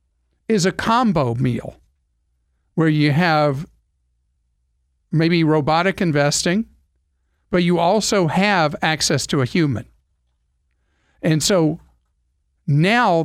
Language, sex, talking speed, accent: English, male, 95 wpm, American